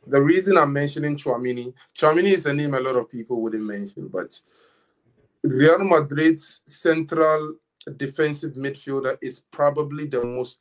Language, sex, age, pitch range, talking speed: English, male, 20-39, 125-160 Hz, 140 wpm